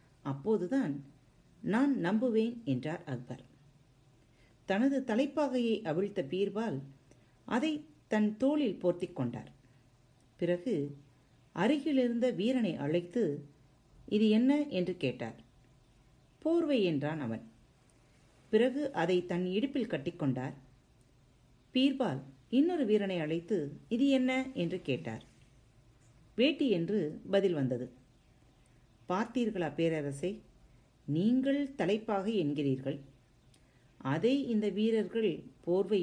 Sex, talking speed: female, 85 wpm